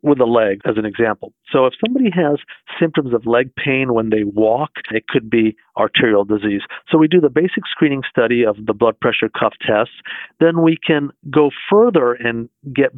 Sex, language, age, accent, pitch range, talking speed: male, English, 50-69, American, 115-145 Hz, 195 wpm